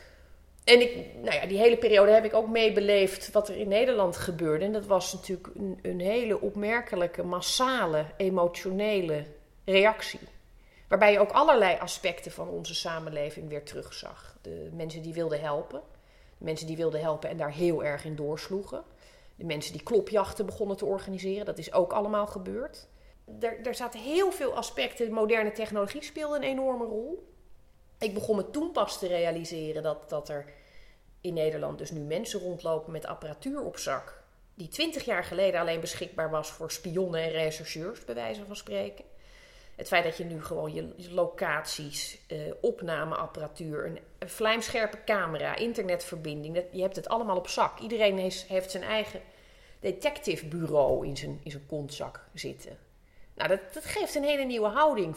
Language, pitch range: Dutch, 160-220 Hz